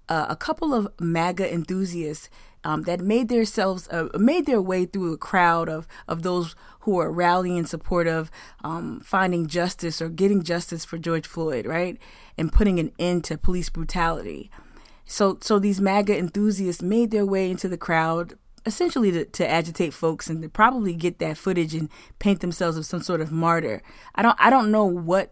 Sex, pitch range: female, 170-220 Hz